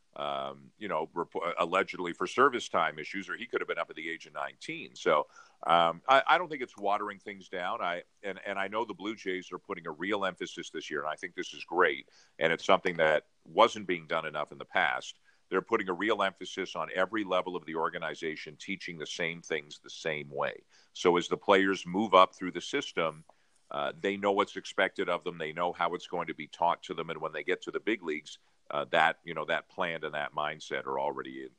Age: 50-69